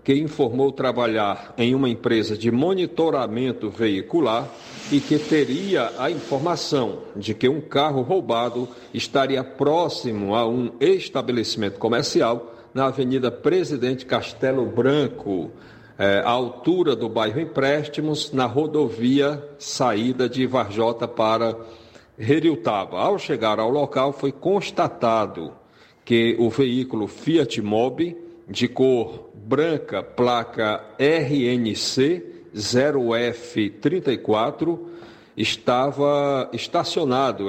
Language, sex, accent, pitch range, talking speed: Portuguese, male, Brazilian, 115-140 Hz, 95 wpm